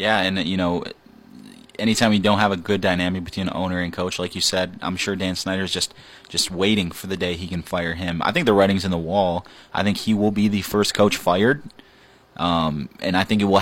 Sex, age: male, 20-39